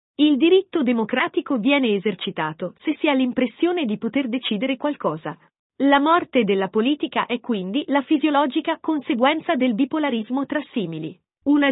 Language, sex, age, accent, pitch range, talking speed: Italian, female, 40-59, native, 225-300 Hz, 140 wpm